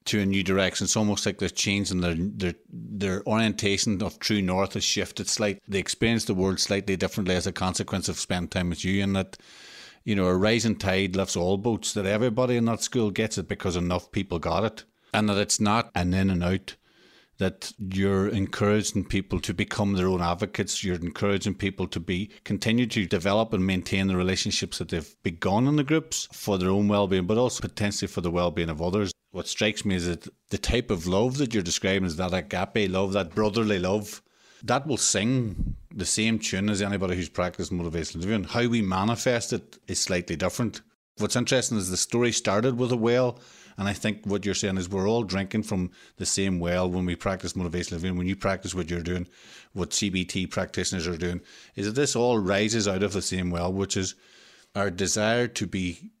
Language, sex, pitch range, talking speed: English, male, 90-105 Hz, 210 wpm